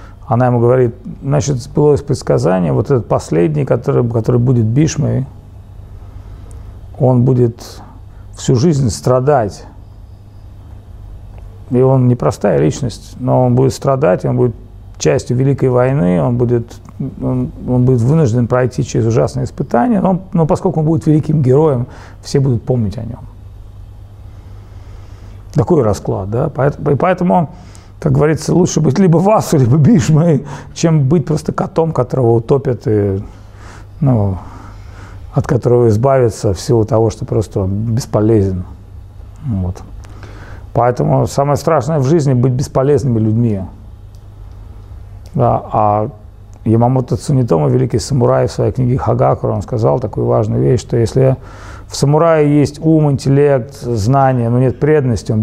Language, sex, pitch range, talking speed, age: Russian, male, 100-135 Hz, 130 wpm, 40-59